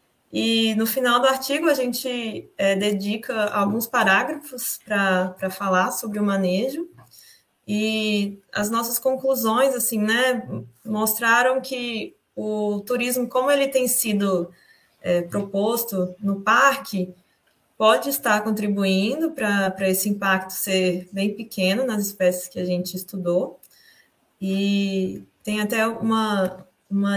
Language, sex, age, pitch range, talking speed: Portuguese, female, 20-39, 195-235 Hz, 115 wpm